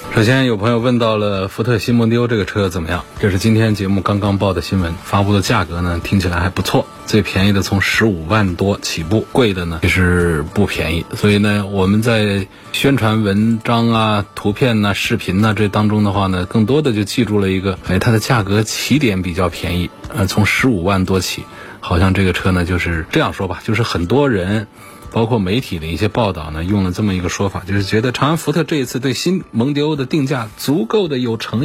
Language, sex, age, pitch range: Chinese, male, 20-39, 95-120 Hz